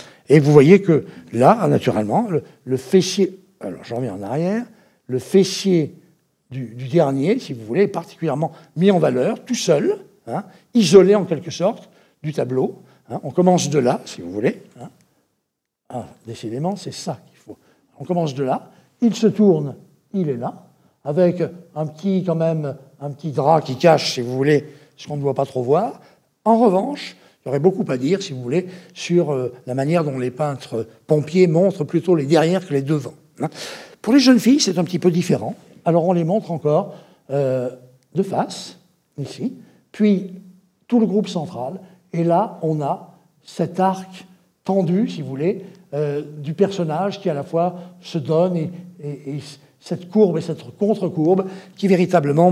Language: French